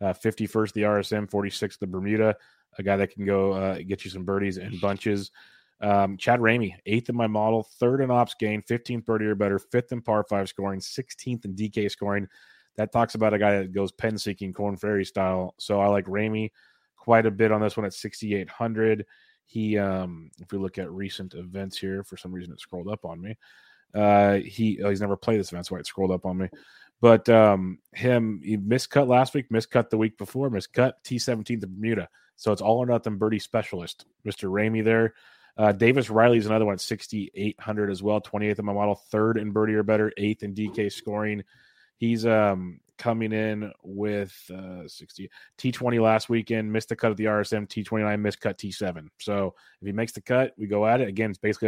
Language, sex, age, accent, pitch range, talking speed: English, male, 30-49, American, 100-110 Hz, 210 wpm